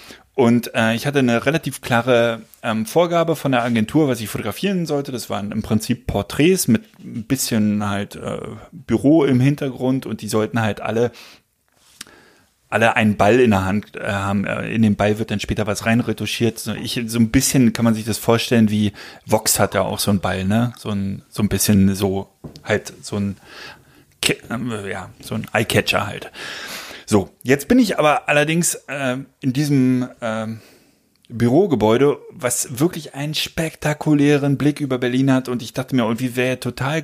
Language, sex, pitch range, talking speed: German, male, 110-140 Hz, 175 wpm